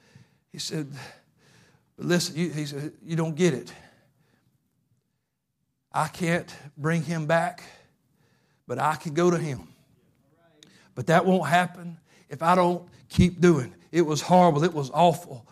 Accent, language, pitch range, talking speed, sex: American, English, 160-185 Hz, 130 wpm, male